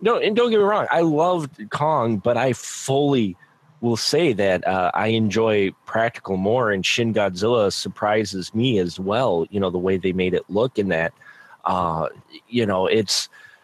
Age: 30-49